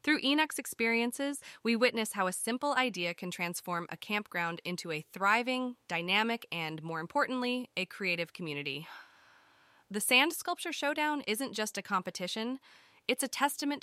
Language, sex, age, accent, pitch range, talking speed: English, female, 20-39, American, 185-255 Hz, 150 wpm